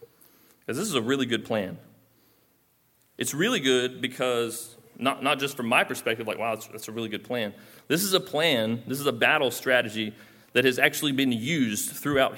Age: 30-49